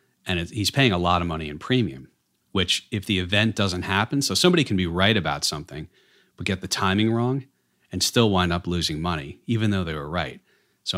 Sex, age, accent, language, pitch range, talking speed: male, 40-59, American, English, 80-100 Hz, 215 wpm